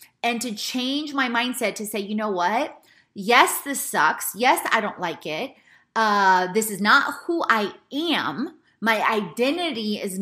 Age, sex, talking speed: 20-39, female, 165 wpm